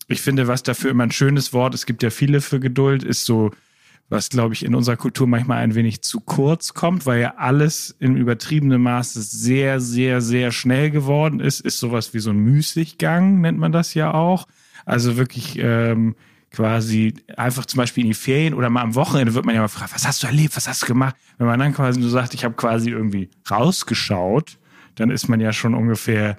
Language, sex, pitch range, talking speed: German, male, 115-140 Hz, 220 wpm